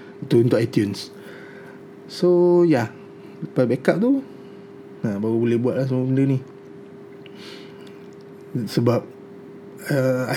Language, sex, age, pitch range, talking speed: Malay, male, 20-39, 125-145 Hz, 110 wpm